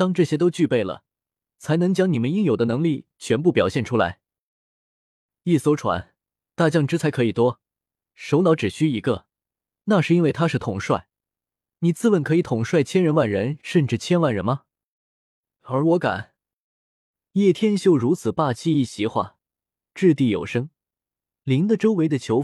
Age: 20-39